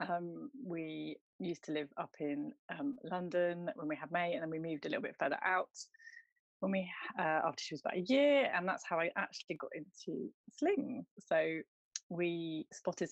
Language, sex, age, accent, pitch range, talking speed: English, female, 30-49, British, 160-210 Hz, 190 wpm